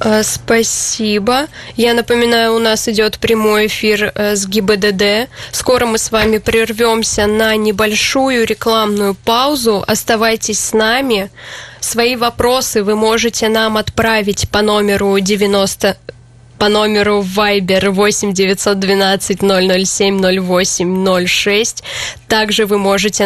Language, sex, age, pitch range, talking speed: Russian, female, 10-29, 195-225 Hz, 110 wpm